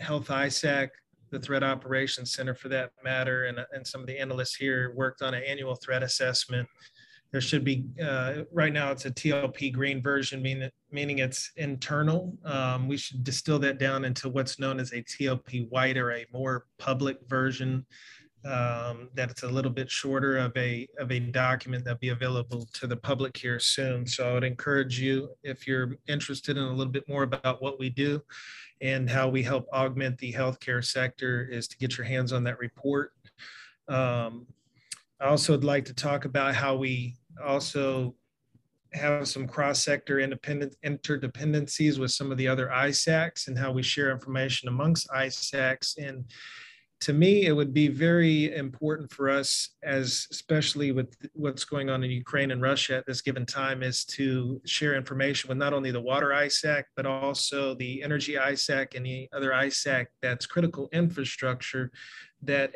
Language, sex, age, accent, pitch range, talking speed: English, male, 30-49, American, 130-140 Hz, 175 wpm